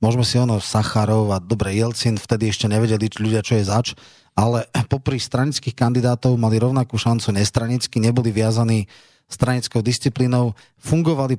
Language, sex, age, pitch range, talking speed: Slovak, male, 30-49, 110-130 Hz, 150 wpm